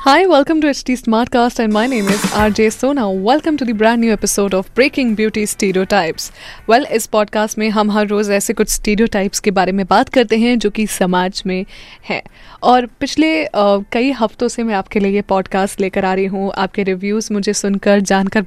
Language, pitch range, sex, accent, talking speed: Hindi, 205-255 Hz, female, native, 210 wpm